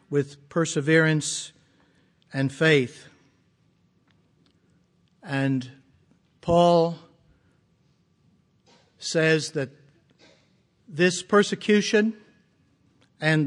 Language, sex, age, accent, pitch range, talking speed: English, male, 60-79, American, 145-180 Hz, 50 wpm